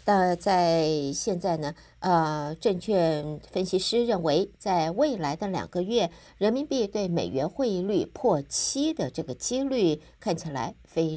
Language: Chinese